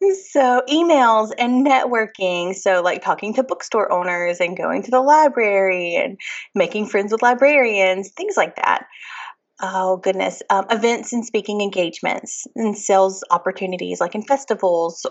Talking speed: 145 wpm